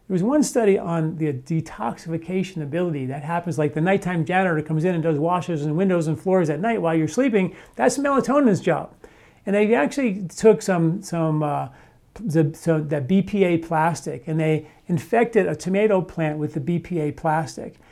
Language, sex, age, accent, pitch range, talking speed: English, male, 40-59, American, 160-190 Hz, 175 wpm